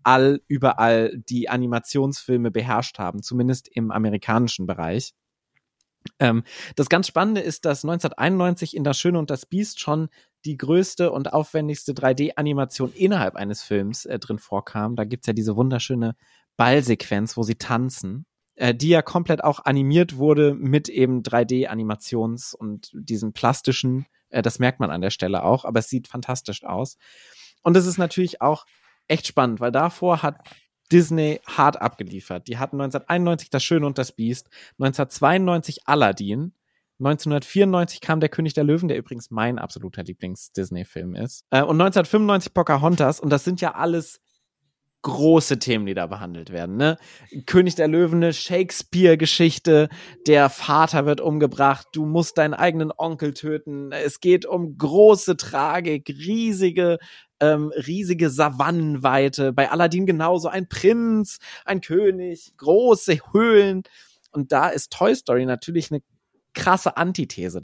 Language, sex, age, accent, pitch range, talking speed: German, male, 30-49, German, 120-170 Hz, 145 wpm